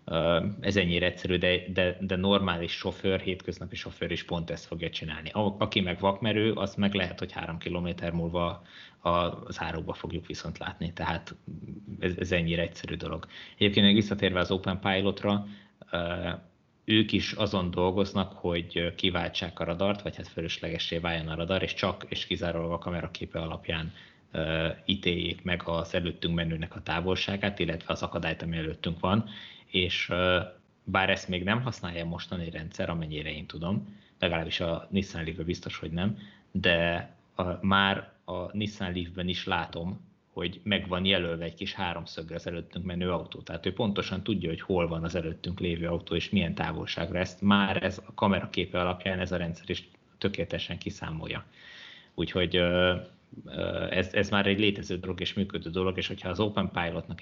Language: Hungarian